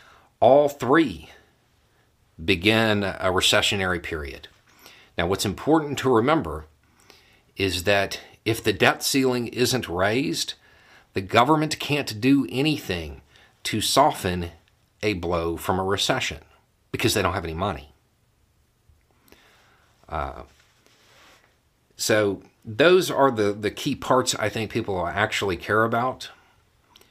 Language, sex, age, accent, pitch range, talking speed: English, male, 40-59, American, 90-115 Hz, 115 wpm